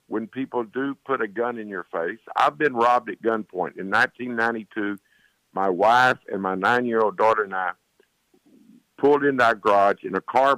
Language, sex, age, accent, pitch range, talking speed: English, male, 50-69, American, 105-130 Hz, 185 wpm